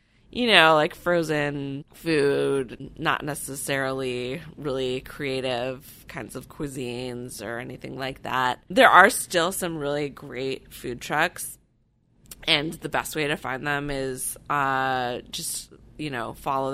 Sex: female